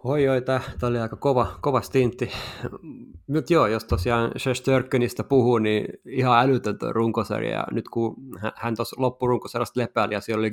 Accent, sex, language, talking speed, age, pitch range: native, male, Finnish, 165 wpm, 20-39, 105-120 Hz